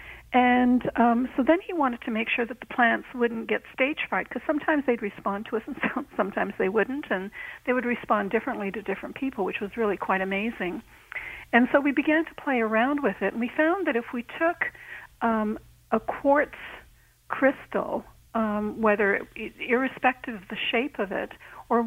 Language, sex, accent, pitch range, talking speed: English, female, American, 210-260 Hz, 185 wpm